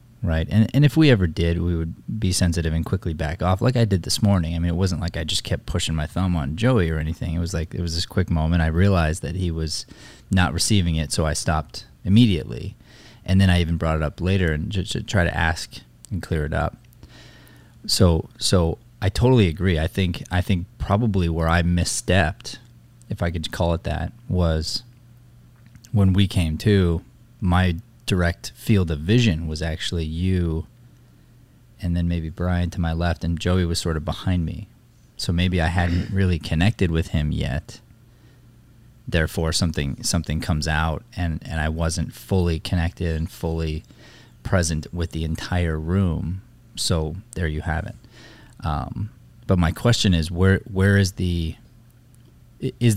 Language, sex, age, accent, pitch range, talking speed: English, male, 20-39, American, 80-110 Hz, 180 wpm